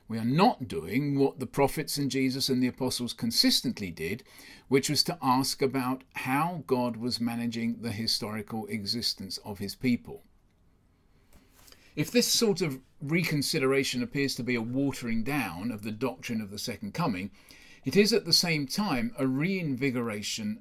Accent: British